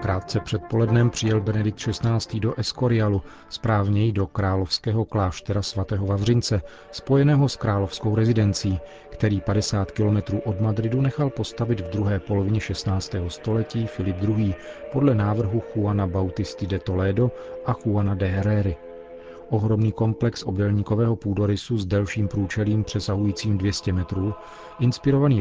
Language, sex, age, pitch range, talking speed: Czech, male, 40-59, 100-115 Hz, 125 wpm